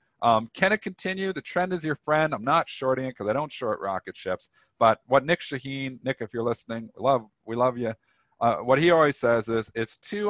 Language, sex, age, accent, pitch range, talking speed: English, male, 40-59, American, 95-130 Hz, 225 wpm